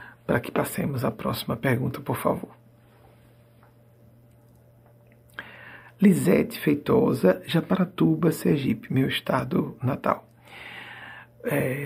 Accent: Brazilian